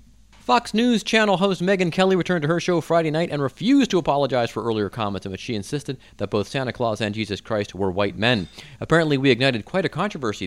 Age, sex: 30-49, male